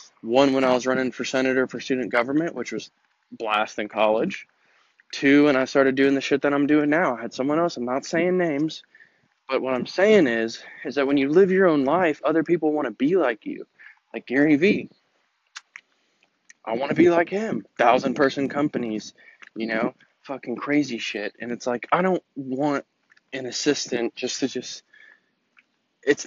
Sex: male